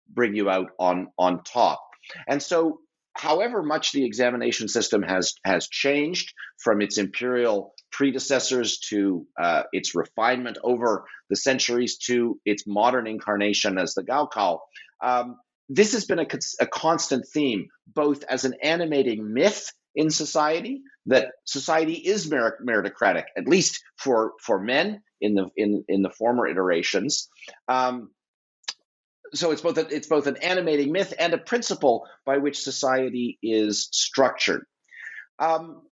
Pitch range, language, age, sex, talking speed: 125-170 Hz, English, 50-69, male, 140 wpm